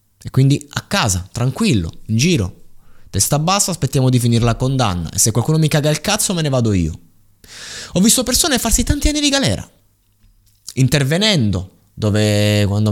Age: 20-39